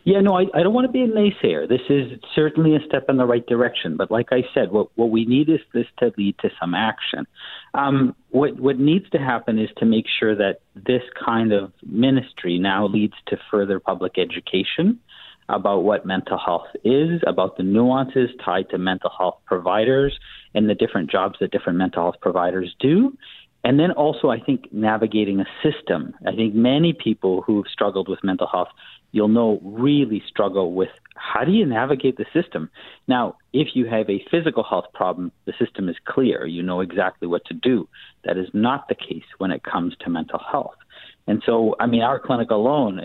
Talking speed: 200 wpm